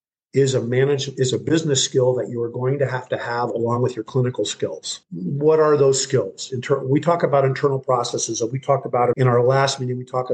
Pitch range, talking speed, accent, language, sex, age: 125-140 Hz, 225 wpm, American, English, male, 50-69